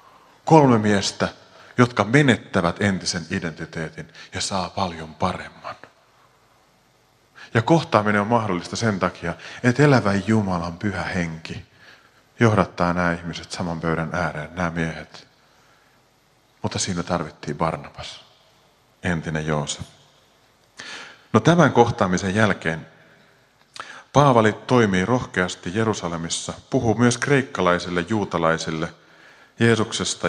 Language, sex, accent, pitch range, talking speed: Finnish, male, native, 90-130 Hz, 95 wpm